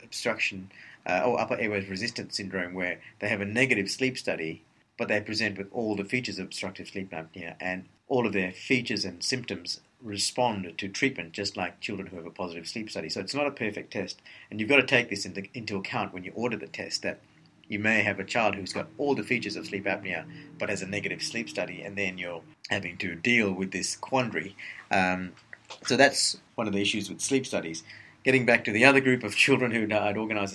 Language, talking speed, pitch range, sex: English, 225 wpm, 95-110 Hz, male